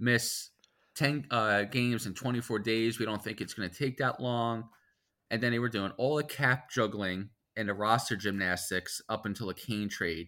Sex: male